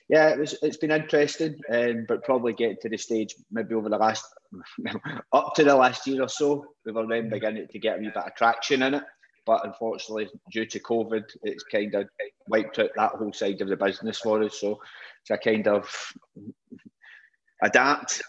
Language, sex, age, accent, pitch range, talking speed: English, male, 20-39, British, 105-125 Hz, 190 wpm